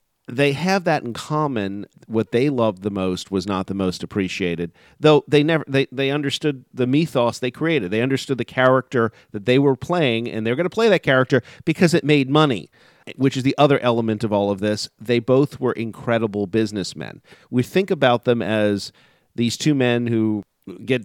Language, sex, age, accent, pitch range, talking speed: English, male, 40-59, American, 110-140 Hz, 190 wpm